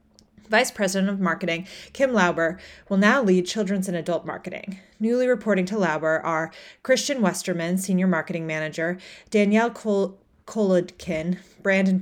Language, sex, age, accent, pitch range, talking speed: English, female, 30-49, American, 175-210 Hz, 135 wpm